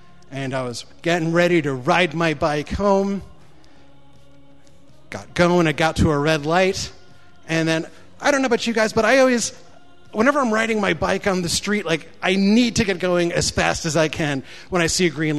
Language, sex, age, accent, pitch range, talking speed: English, male, 30-49, American, 165-215 Hz, 205 wpm